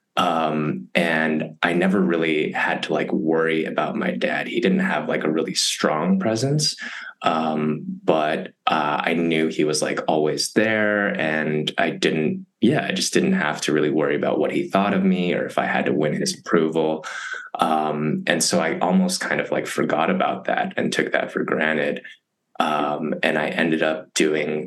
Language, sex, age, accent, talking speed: English, male, 20-39, American, 185 wpm